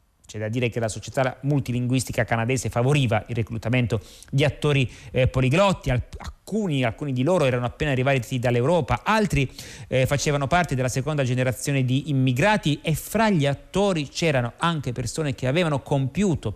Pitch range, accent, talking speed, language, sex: 125-155 Hz, native, 150 wpm, Italian, male